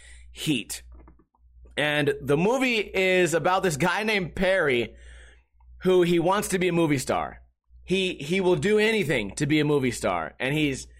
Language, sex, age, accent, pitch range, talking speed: English, male, 30-49, American, 155-200 Hz, 165 wpm